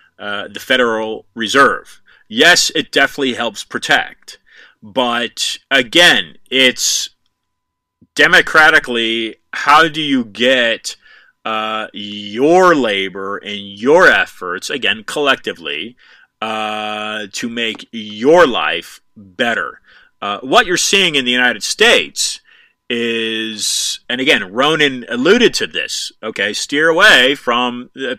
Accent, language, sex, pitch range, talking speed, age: American, English, male, 105-125 Hz, 110 wpm, 30-49